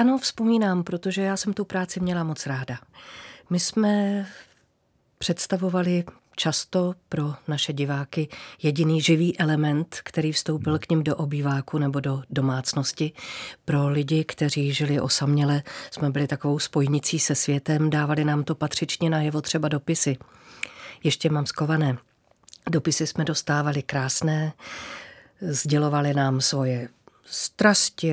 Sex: female